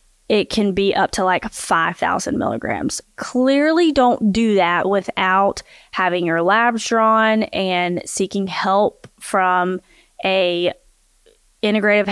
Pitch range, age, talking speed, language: 190-230 Hz, 20-39, 115 wpm, English